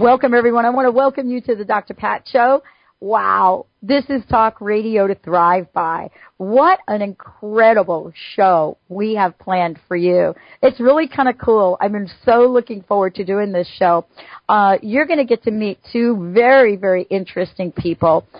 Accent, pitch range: American, 185-230 Hz